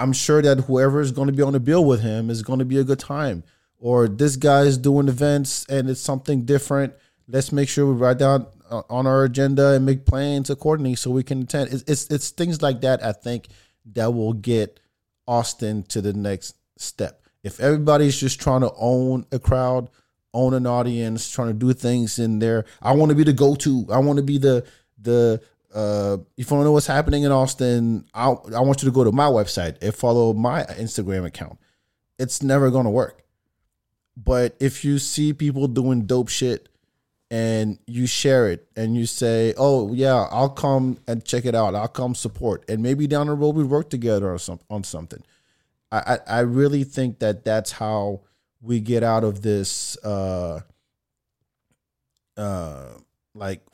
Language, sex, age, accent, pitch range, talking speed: English, male, 30-49, American, 110-135 Hz, 200 wpm